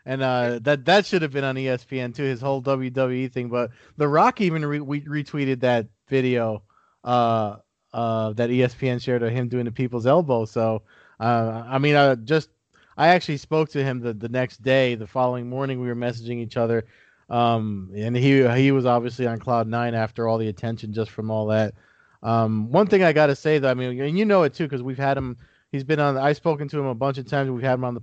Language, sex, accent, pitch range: English, male, American, 120-140 Hz